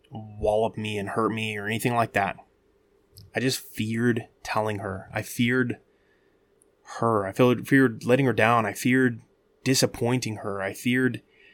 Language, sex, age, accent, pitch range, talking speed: English, male, 20-39, American, 105-130 Hz, 155 wpm